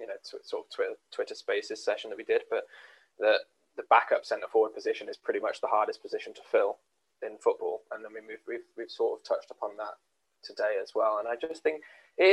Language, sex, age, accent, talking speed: English, male, 10-29, British, 230 wpm